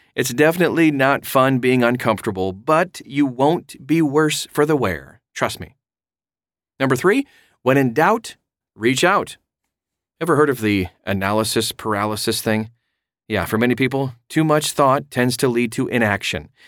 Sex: male